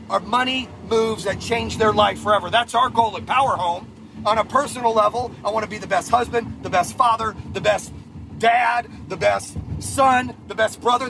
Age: 40-59